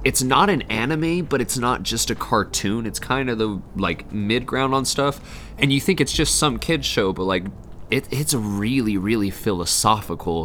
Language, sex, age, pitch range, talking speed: English, male, 20-39, 100-130 Hz, 195 wpm